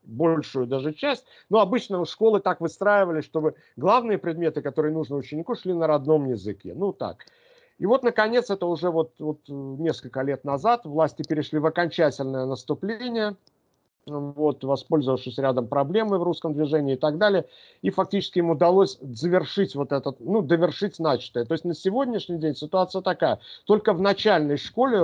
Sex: male